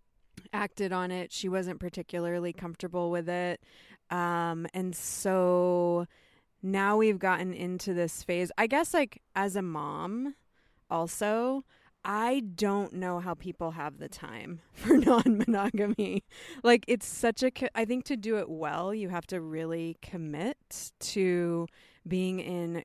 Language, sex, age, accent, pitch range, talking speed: English, female, 20-39, American, 170-210 Hz, 140 wpm